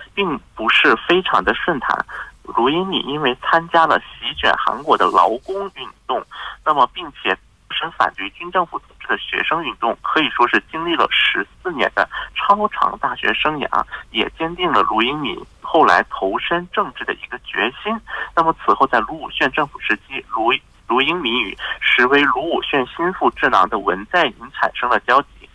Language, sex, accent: Korean, male, Chinese